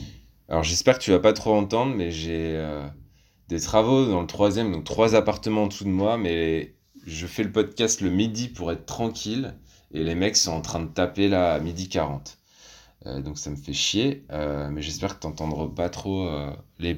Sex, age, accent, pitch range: male, 20-39, French, 85-105 Hz